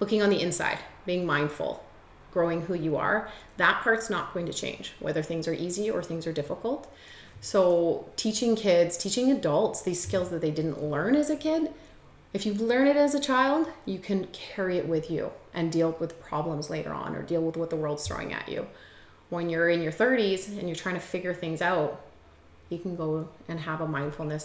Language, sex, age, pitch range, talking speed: English, female, 30-49, 160-200 Hz, 210 wpm